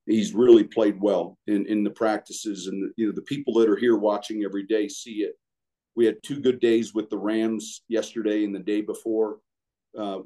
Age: 50-69